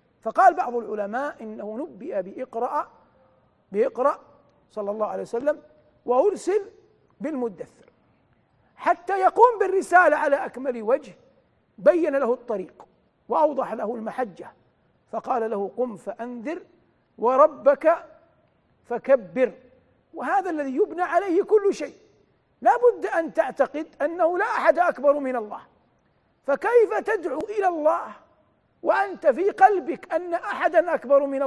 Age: 50-69